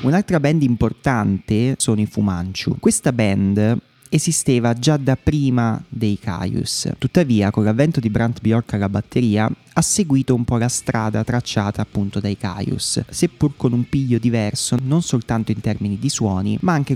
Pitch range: 110-135 Hz